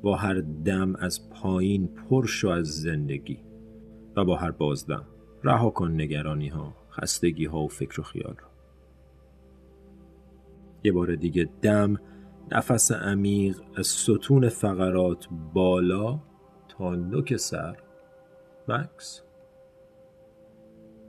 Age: 40-59